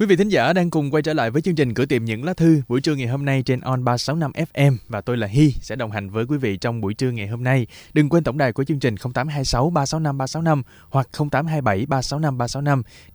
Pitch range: 100-140 Hz